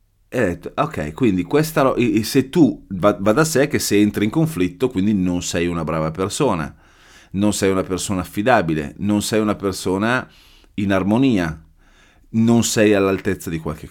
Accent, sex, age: native, male, 30-49